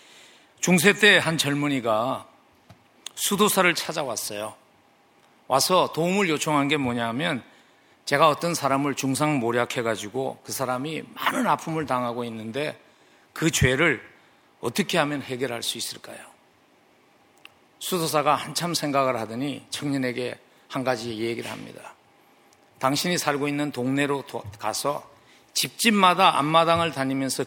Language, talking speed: English, 100 wpm